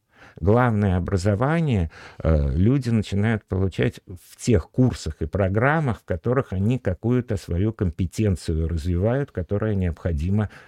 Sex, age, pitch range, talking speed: male, 50-69, 90-115 Hz, 110 wpm